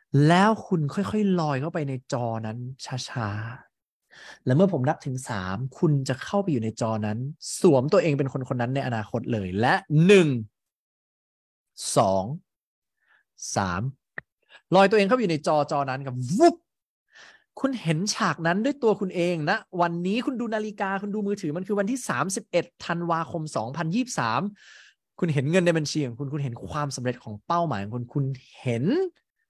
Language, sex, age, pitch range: English, male, 20-39, 125-185 Hz